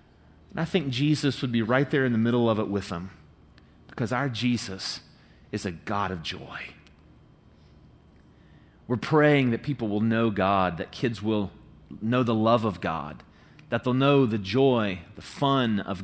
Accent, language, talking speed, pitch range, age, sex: American, English, 170 wpm, 100-140 Hz, 30-49, male